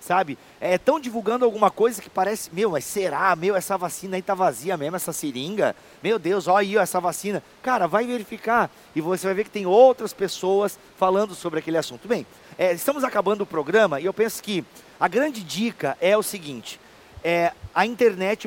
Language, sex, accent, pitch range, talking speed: Portuguese, male, Brazilian, 165-210 Hz, 200 wpm